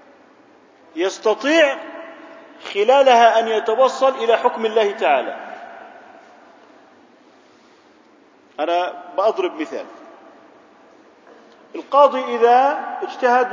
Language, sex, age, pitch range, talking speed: Arabic, male, 40-59, 205-280 Hz, 60 wpm